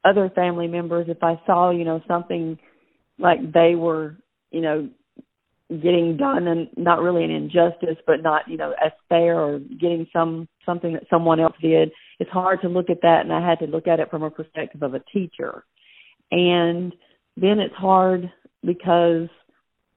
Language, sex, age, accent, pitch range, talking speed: English, female, 40-59, American, 160-180 Hz, 175 wpm